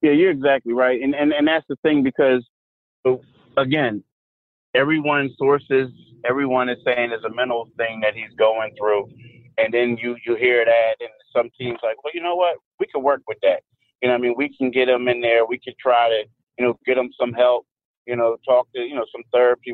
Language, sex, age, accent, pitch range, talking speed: English, male, 30-49, American, 120-150 Hz, 220 wpm